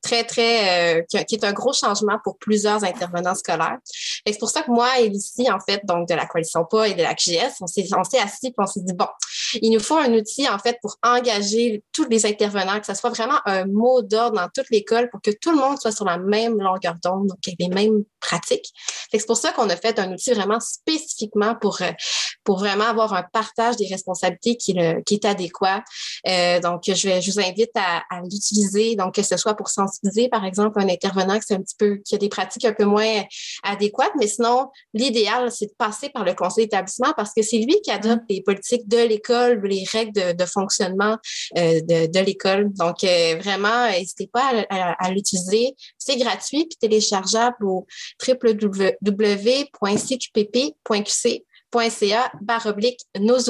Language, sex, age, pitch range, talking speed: French, female, 20-39, 195-235 Hz, 200 wpm